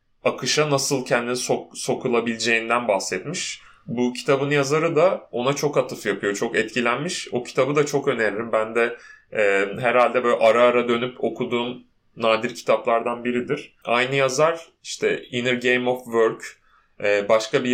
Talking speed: 145 wpm